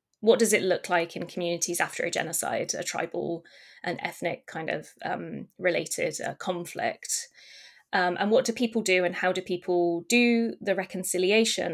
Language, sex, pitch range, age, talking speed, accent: English, female, 175-220 Hz, 20-39, 170 wpm, British